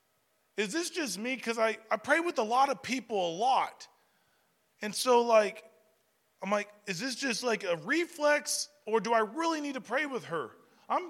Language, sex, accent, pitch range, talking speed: English, male, American, 205-270 Hz, 195 wpm